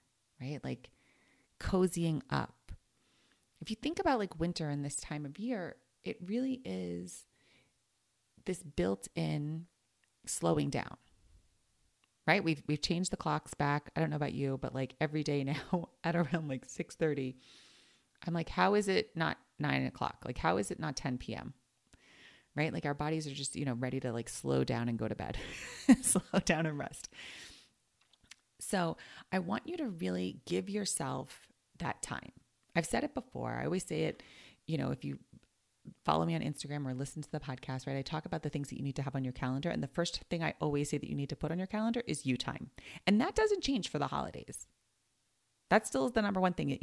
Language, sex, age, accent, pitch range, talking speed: English, female, 30-49, American, 130-175 Hz, 205 wpm